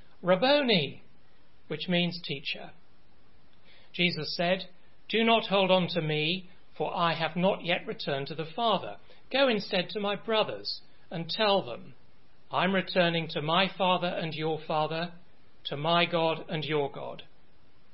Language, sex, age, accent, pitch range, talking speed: English, male, 40-59, British, 140-175 Hz, 145 wpm